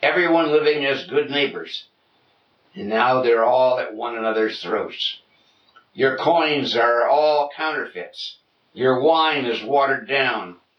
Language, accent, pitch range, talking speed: English, American, 120-150 Hz, 130 wpm